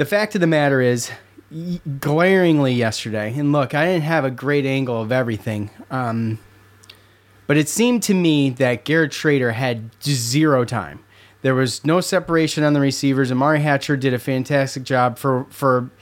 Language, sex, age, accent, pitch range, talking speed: English, male, 30-49, American, 120-155 Hz, 170 wpm